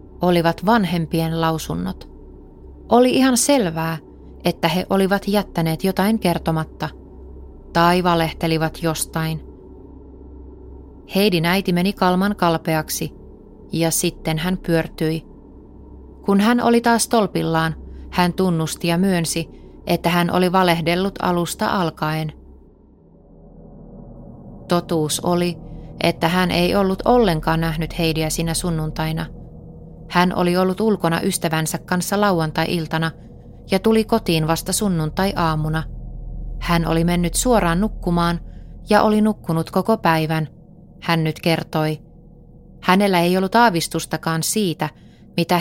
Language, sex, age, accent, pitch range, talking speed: Finnish, female, 30-49, native, 160-190 Hz, 105 wpm